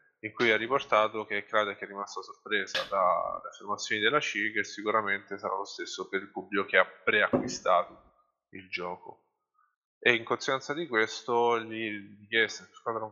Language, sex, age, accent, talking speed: Italian, male, 20-39, native, 160 wpm